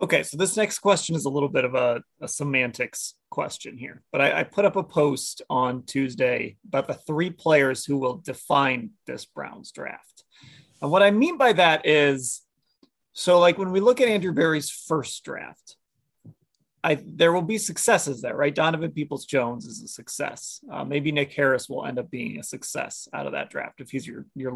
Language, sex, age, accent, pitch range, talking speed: English, male, 30-49, American, 135-180 Hz, 200 wpm